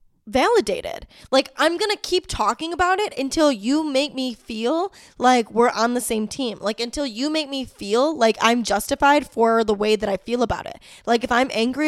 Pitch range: 220-275 Hz